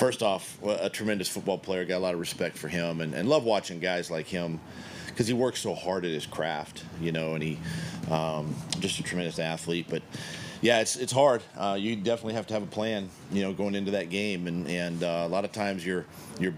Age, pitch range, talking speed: 40-59, 90-105 Hz, 235 wpm